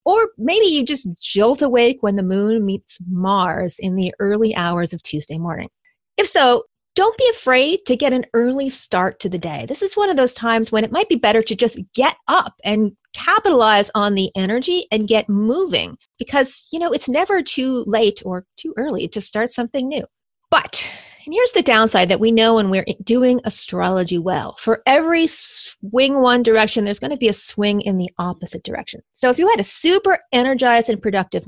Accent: American